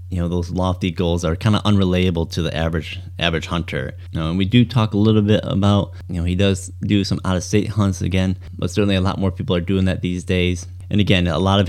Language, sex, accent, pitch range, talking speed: English, male, American, 85-95 Hz, 245 wpm